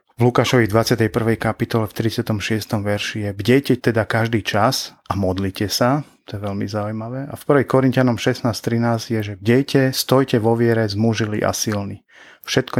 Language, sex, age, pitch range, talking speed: Czech, male, 30-49, 105-120 Hz, 160 wpm